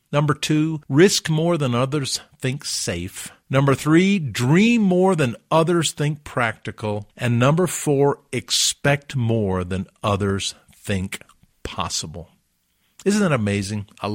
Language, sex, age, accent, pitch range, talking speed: English, male, 50-69, American, 100-150 Hz, 125 wpm